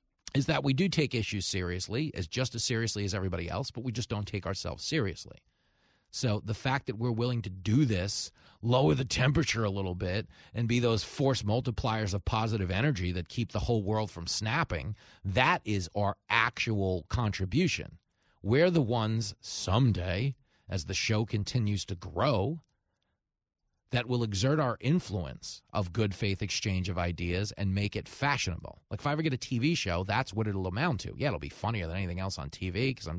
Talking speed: 190 wpm